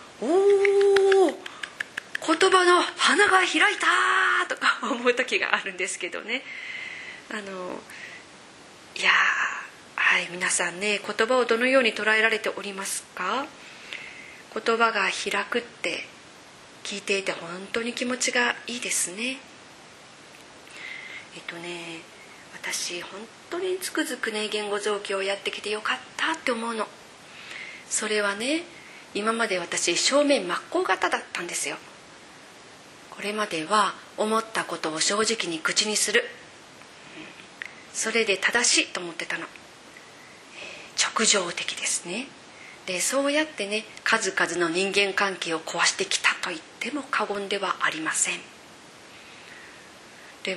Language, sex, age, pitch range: Japanese, female, 30-49, 195-265 Hz